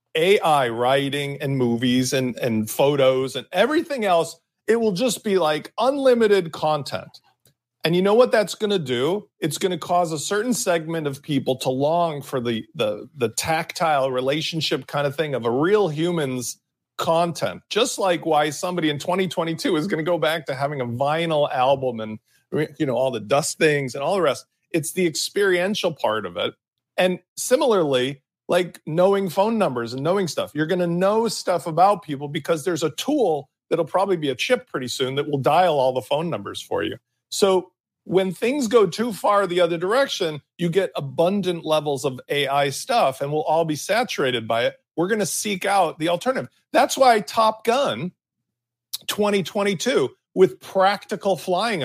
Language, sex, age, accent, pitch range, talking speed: English, male, 40-59, American, 140-190 Hz, 180 wpm